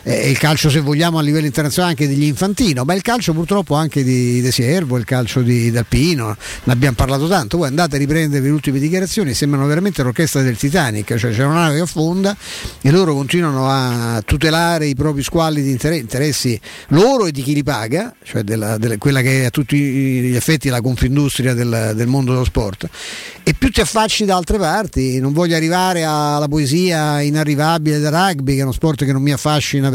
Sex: male